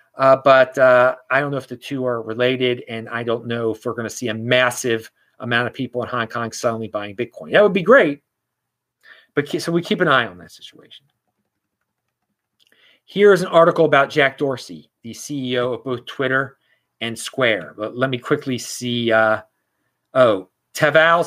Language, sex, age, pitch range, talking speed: English, male, 30-49, 125-175 Hz, 185 wpm